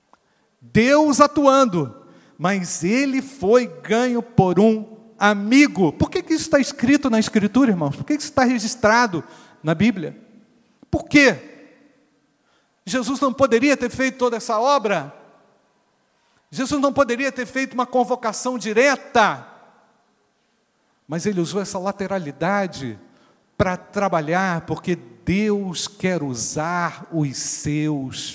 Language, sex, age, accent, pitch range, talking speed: Portuguese, male, 50-69, Brazilian, 150-245 Hz, 120 wpm